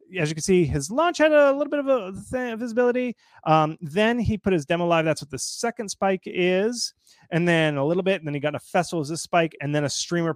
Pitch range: 150-195 Hz